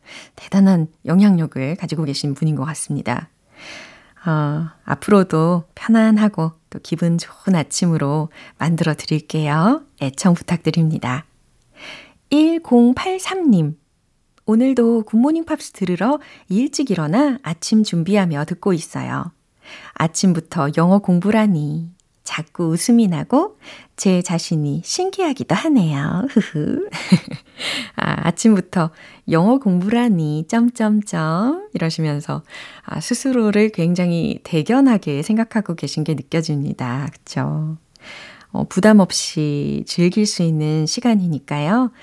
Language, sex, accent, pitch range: Korean, female, native, 160-235 Hz